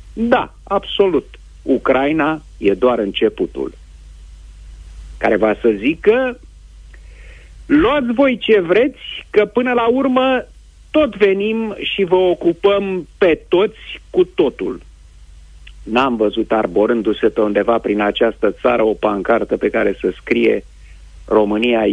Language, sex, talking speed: Romanian, male, 115 wpm